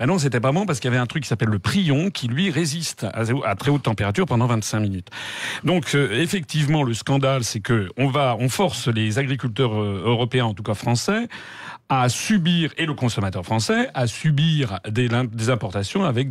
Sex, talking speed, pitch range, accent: male, 190 wpm, 115-165 Hz, French